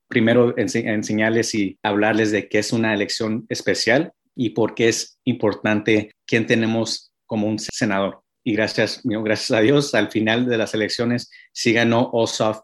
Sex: male